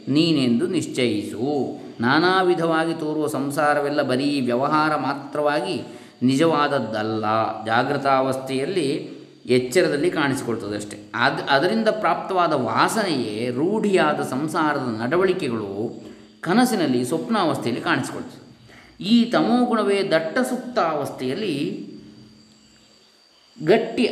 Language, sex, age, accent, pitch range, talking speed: Kannada, male, 20-39, native, 120-150 Hz, 65 wpm